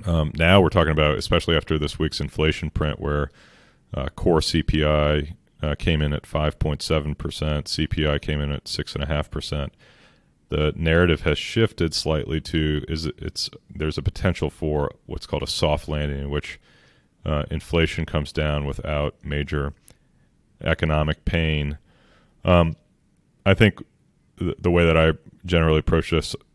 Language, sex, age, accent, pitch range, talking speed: English, male, 30-49, American, 75-80 Hz, 140 wpm